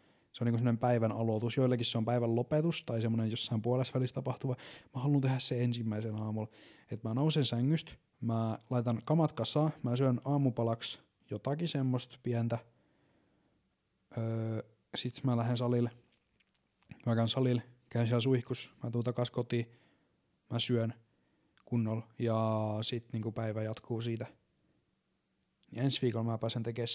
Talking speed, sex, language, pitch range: 150 wpm, male, Finnish, 115-125 Hz